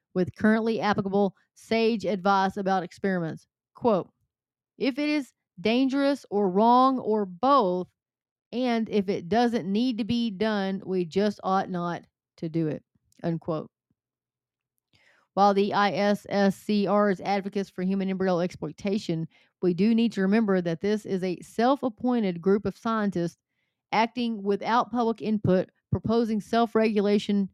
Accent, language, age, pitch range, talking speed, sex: American, English, 30-49, 180-215 Hz, 130 wpm, female